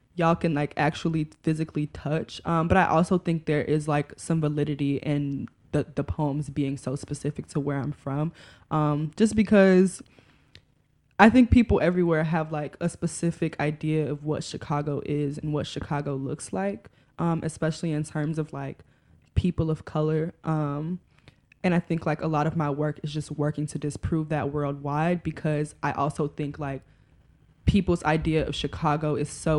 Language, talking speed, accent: English, 170 wpm, American